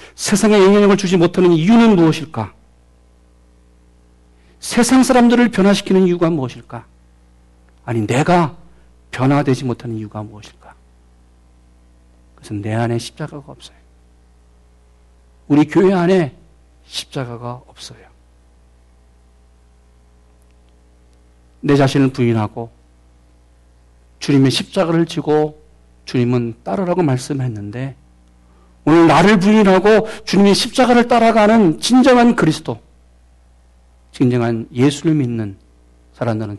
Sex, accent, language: male, native, Korean